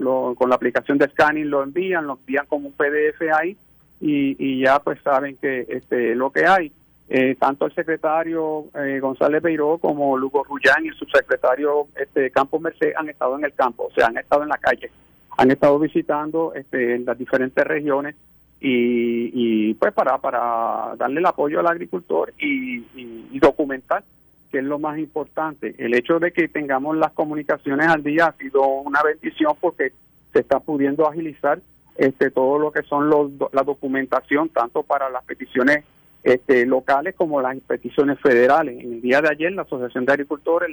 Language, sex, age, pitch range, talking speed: Spanish, male, 50-69, 130-160 Hz, 185 wpm